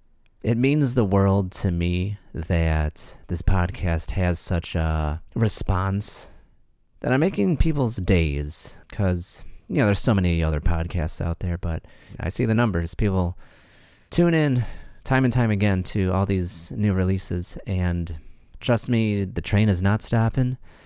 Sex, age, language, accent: male, 30-49, English, American